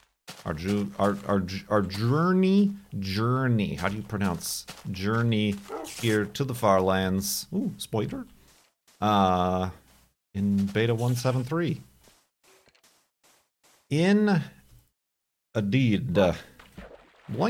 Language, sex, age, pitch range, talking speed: English, male, 50-69, 85-120 Hz, 80 wpm